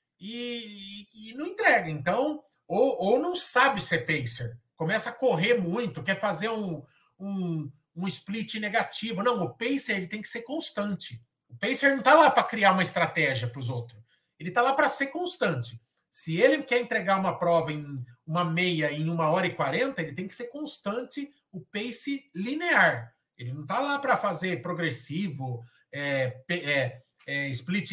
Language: Portuguese